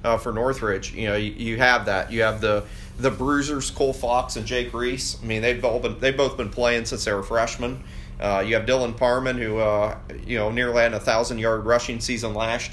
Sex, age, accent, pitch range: male, 30-49, American, 110-125 Hz